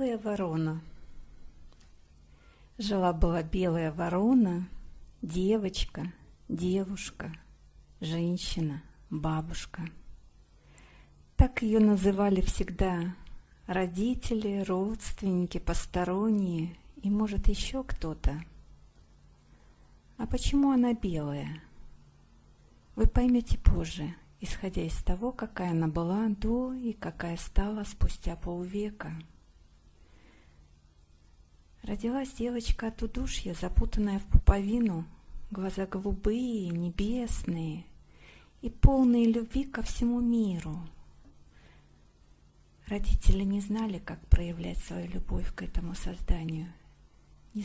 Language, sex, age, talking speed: English, female, 50-69, 85 wpm